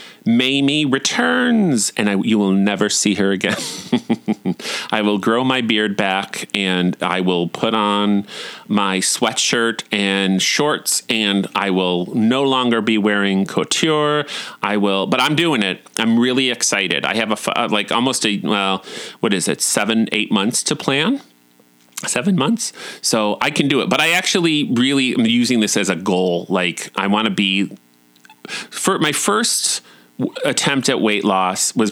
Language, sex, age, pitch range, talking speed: English, male, 30-49, 95-130 Hz, 165 wpm